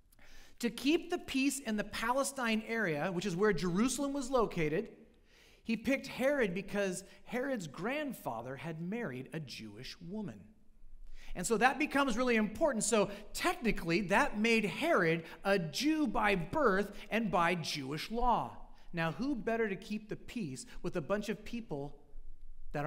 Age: 40-59